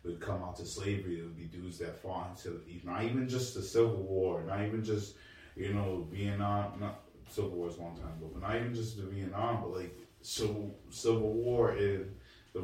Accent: American